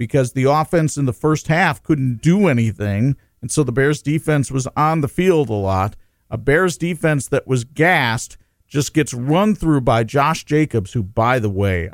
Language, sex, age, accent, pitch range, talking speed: English, male, 50-69, American, 105-145 Hz, 190 wpm